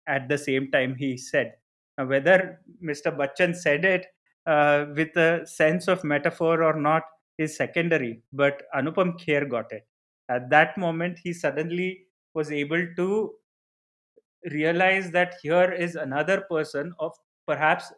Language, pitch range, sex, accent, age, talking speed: English, 135-175 Hz, male, Indian, 30-49, 145 wpm